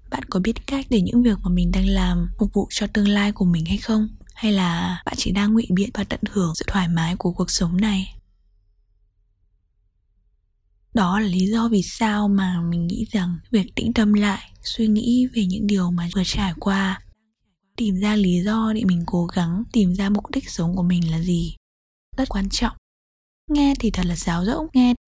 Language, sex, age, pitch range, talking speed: Vietnamese, female, 10-29, 170-215 Hz, 210 wpm